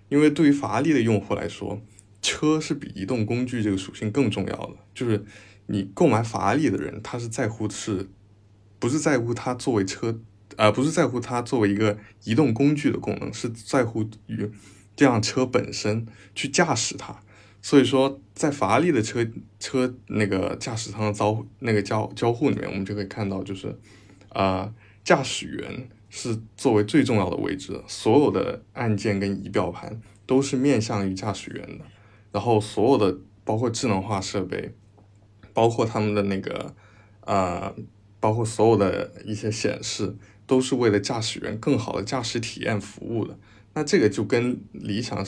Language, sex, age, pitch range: Chinese, male, 20-39, 100-120 Hz